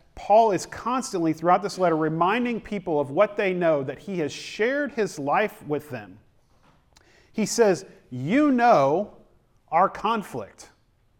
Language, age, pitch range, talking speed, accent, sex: English, 40-59, 135-180 Hz, 140 wpm, American, male